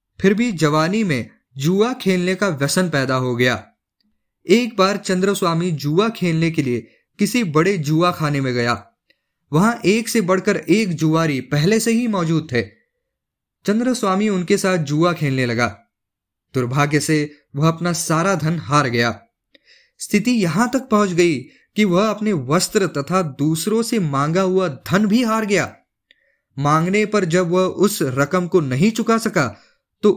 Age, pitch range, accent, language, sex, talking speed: 20-39, 150-200 Hz, native, Hindi, male, 155 wpm